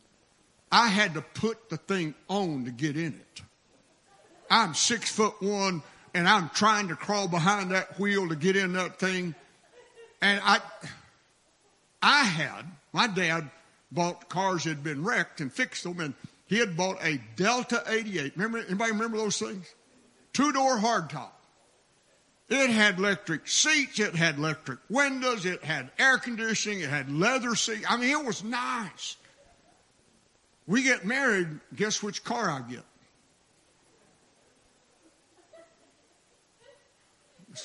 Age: 60-79